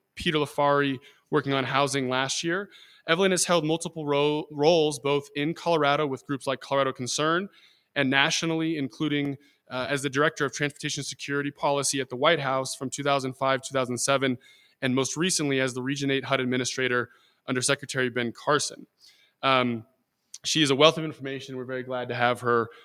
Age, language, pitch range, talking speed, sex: 20-39, English, 135-155 Hz, 170 wpm, male